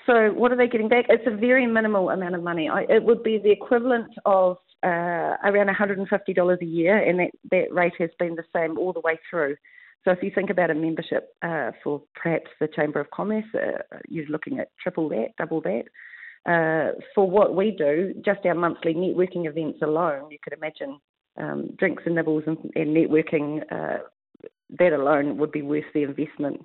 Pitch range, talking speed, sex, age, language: 160-205 Hz, 200 wpm, female, 40-59, English